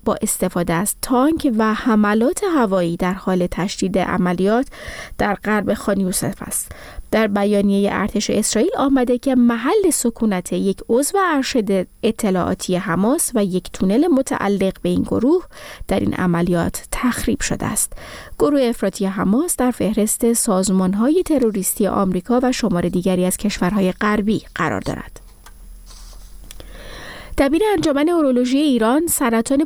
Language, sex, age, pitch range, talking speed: Persian, female, 30-49, 190-250 Hz, 125 wpm